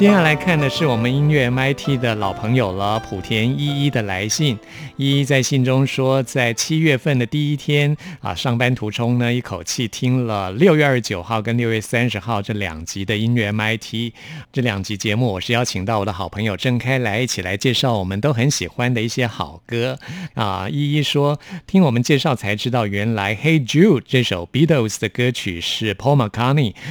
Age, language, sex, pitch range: 50-69, Chinese, male, 105-140 Hz